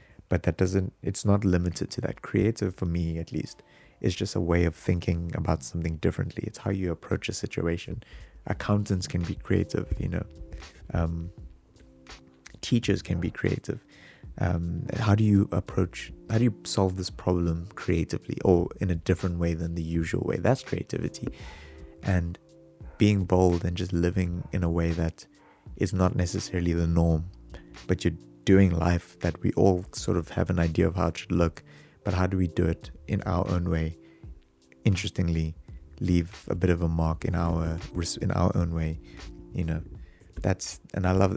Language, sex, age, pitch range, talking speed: English, male, 30-49, 85-95 Hz, 180 wpm